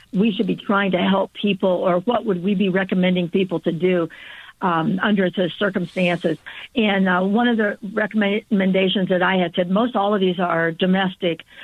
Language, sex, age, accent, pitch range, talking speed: English, female, 60-79, American, 185-225 Hz, 185 wpm